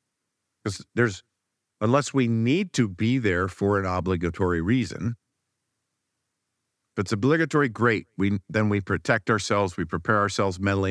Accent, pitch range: American, 90-115 Hz